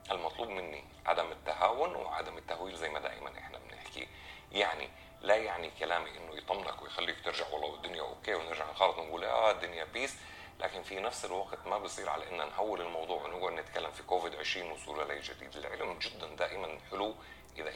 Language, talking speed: Arabic, 165 wpm